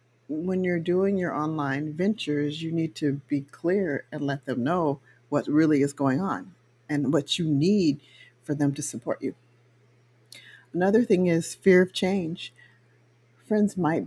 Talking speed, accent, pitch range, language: 160 wpm, American, 125-165 Hz, English